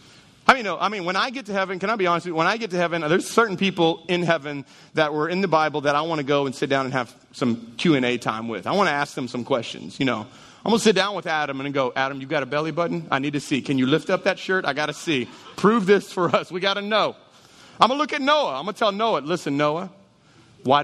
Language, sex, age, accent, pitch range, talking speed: English, male, 30-49, American, 135-190 Hz, 300 wpm